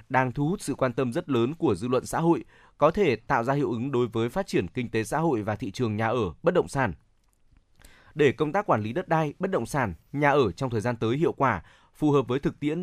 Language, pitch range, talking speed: Vietnamese, 115-155 Hz, 270 wpm